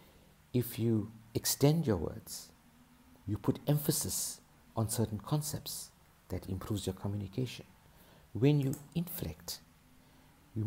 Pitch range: 95-125 Hz